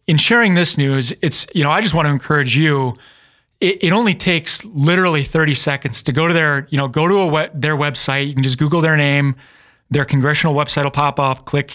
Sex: male